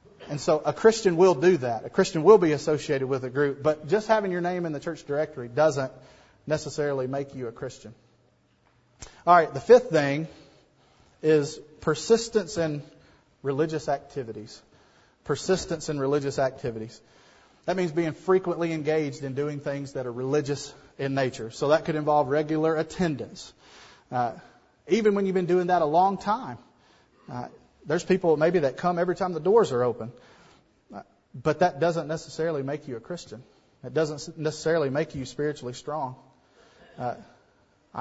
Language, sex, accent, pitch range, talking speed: English, male, American, 140-175 Hz, 160 wpm